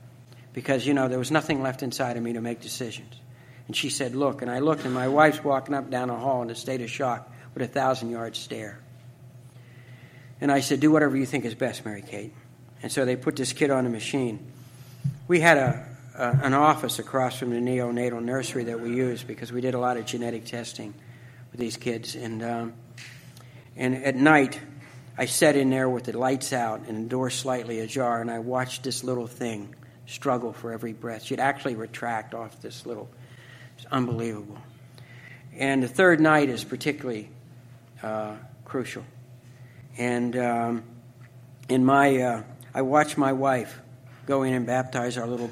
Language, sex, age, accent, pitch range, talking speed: English, male, 60-79, American, 120-135 Hz, 185 wpm